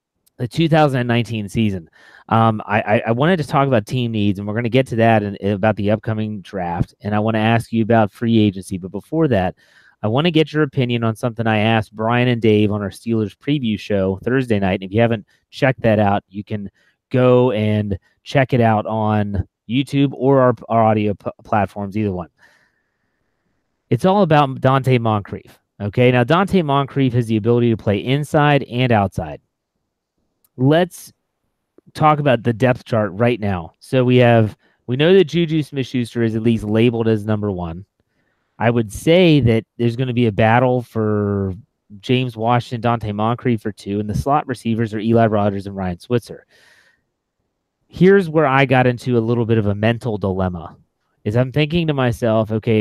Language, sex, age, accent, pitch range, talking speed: English, male, 30-49, American, 105-130 Hz, 190 wpm